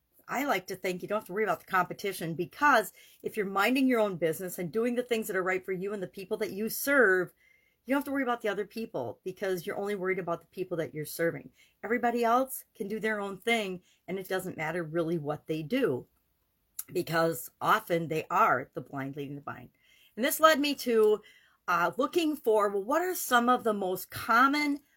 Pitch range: 175-245 Hz